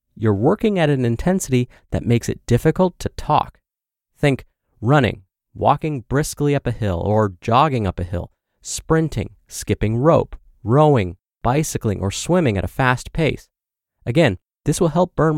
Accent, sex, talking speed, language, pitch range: American, male, 150 wpm, English, 105-145 Hz